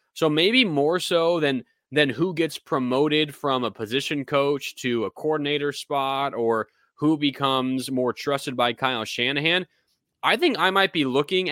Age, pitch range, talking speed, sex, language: 20-39, 120-160 Hz, 160 wpm, male, English